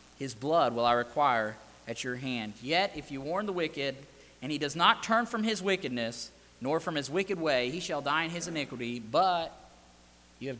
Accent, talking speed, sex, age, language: American, 205 wpm, male, 30-49, English